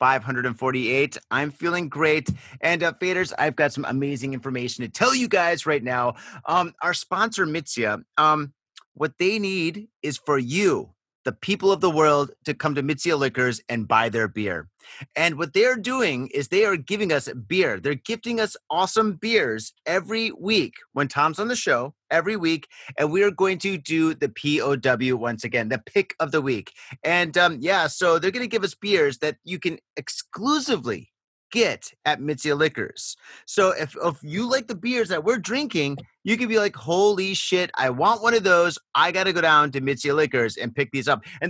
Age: 30-49